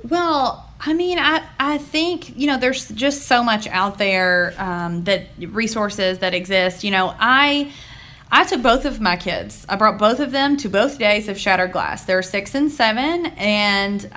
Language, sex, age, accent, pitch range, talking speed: English, female, 30-49, American, 185-230 Hz, 185 wpm